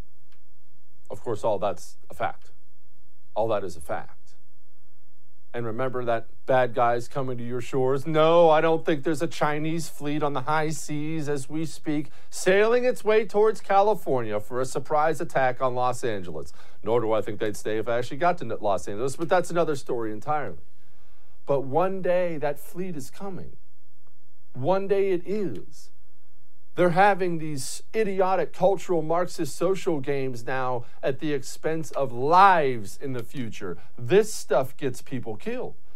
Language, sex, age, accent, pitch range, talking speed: English, male, 50-69, American, 125-175 Hz, 165 wpm